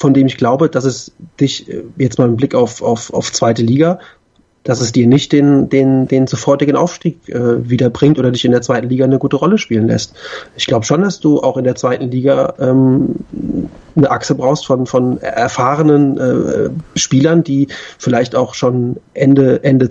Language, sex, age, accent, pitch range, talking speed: German, male, 30-49, German, 125-145 Hz, 190 wpm